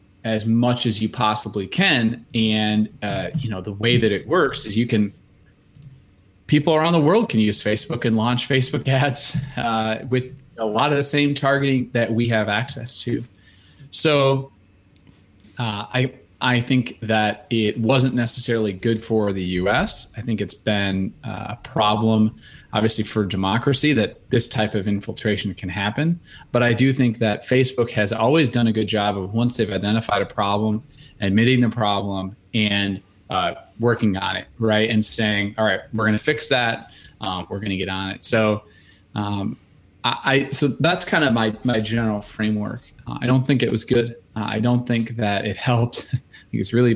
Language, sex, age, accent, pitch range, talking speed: English, male, 30-49, American, 105-125 Hz, 185 wpm